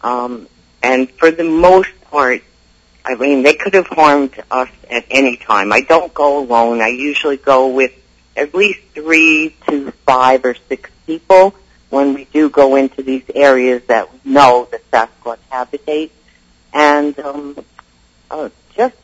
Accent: American